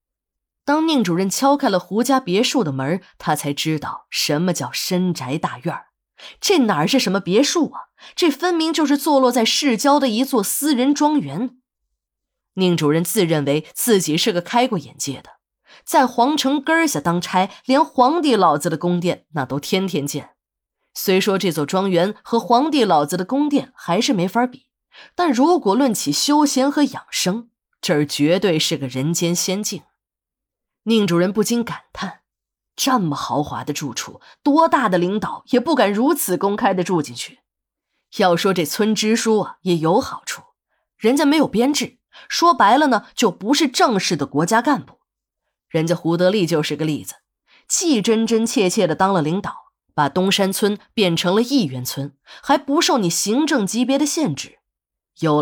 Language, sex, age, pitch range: Chinese, female, 20-39, 170-265 Hz